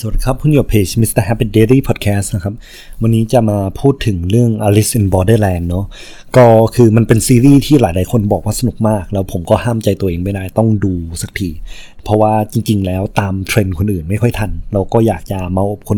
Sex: male